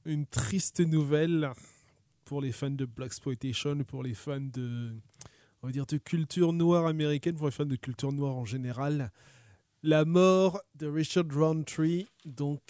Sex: male